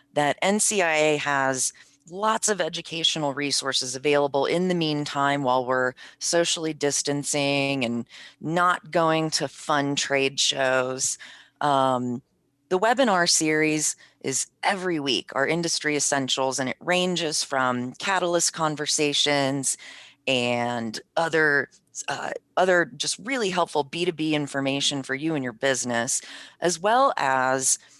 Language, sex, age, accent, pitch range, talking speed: English, female, 30-49, American, 130-160 Hz, 120 wpm